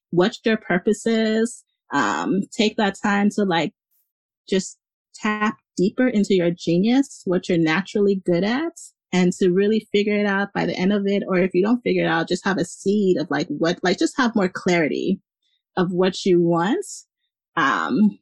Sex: female